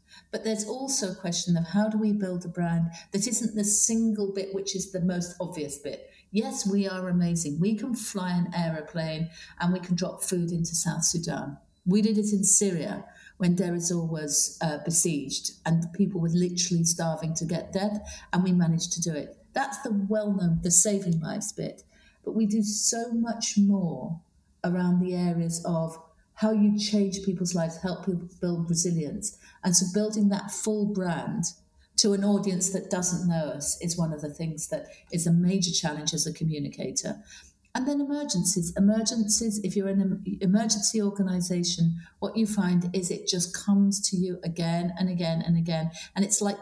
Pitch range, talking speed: 170-205 Hz, 185 wpm